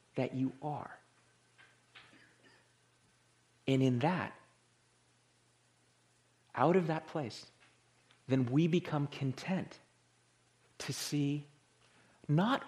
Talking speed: 80 wpm